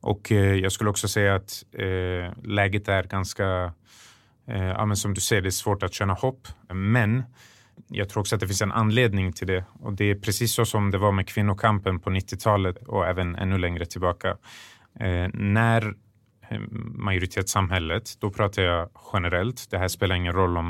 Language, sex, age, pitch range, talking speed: English, male, 30-49, 90-105 Hz, 190 wpm